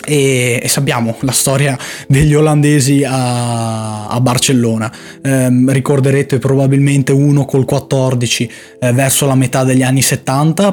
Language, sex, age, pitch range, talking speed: Italian, male, 20-39, 120-145 Hz, 130 wpm